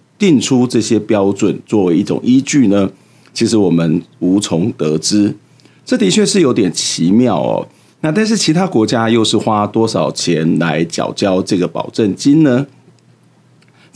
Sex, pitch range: male, 90-120 Hz